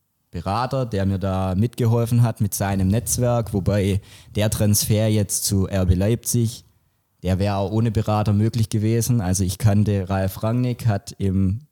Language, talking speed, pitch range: German, 155 wpm, 105-120 Hz